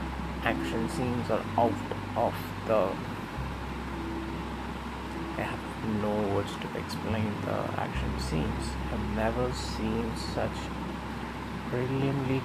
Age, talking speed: 20-39, 95 wpm